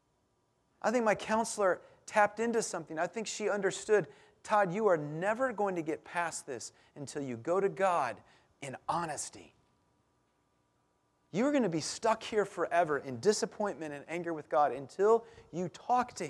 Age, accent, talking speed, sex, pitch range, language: 40-59, American, 165 wpm, male, 120-185 Hz, English